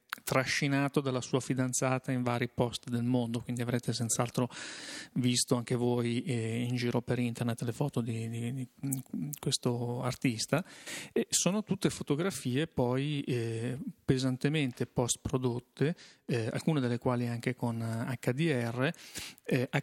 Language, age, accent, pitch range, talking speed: Italian, 40-59, native, 120-140 Hz, 135 wpm